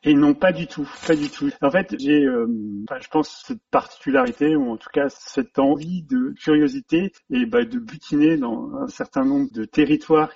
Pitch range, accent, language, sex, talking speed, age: 150-250 Hz, French, French, male, 195 wpm, 40-59